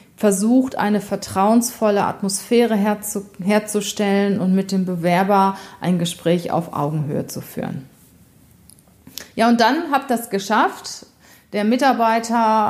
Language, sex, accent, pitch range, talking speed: German, female, German, 185-220 Hz, 110 wpm